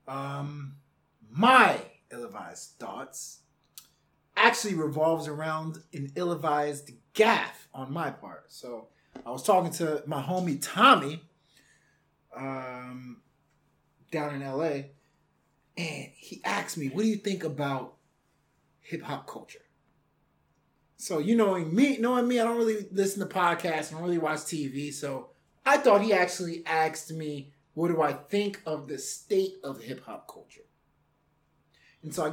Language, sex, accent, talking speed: English, male, American, 135 wpm